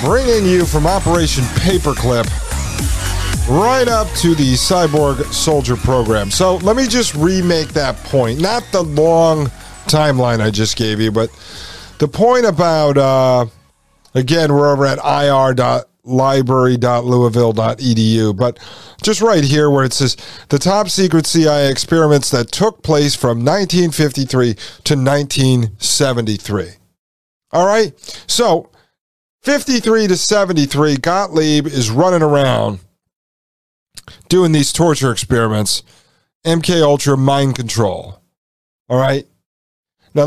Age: 40-59